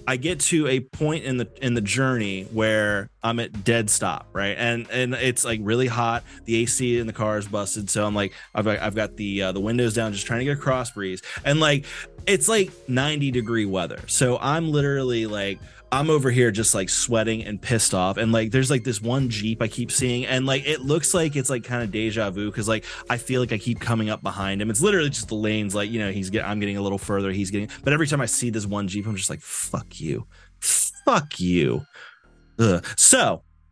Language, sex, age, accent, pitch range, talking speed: English, male, 20-39, American, 105-150 Hz, 235 wpm